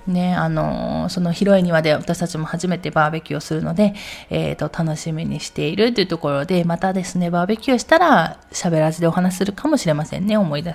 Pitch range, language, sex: 165-210 Hz, Japanese, female